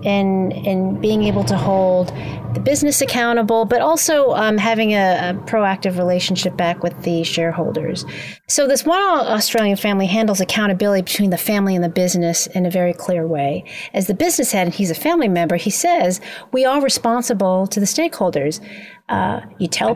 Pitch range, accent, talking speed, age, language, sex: 185-235 Hz, American, 175 wpm, 40-59, English, female